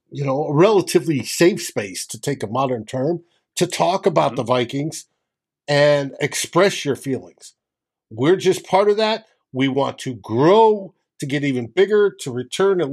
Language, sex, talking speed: English, male, 165 wpm